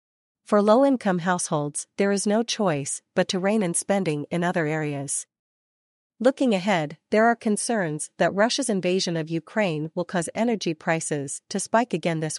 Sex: female